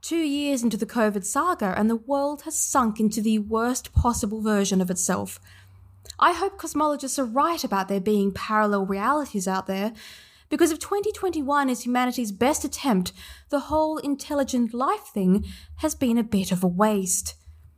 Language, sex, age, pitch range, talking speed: English, female, 20-39, 195-275 Hz, 165 wpm